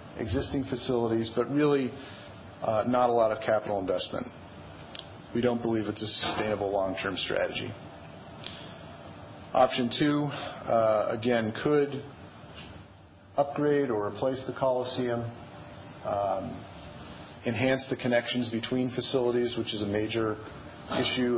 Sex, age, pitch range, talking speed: male, 40-59, 105-125 Hz, 110 wpm